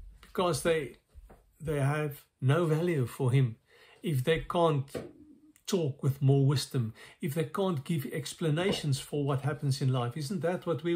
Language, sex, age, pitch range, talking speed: English, male, 50-69, 125-155 Hz, 160 wpm